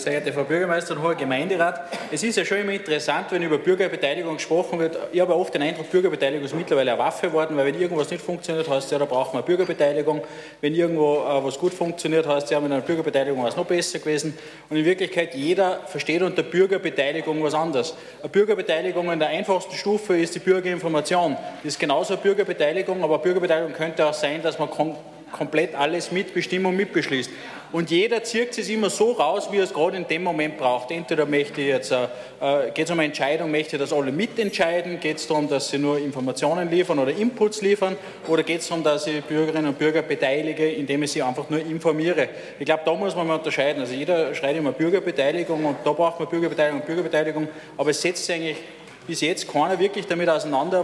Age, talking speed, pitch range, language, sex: 30-49, 210 wpm, 150-180 Hz, German, male